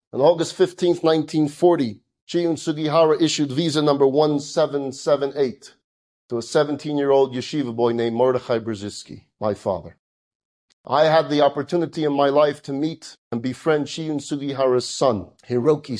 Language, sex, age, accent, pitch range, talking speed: English, male, 40-59, American, 120-150 Hz, 130 wpm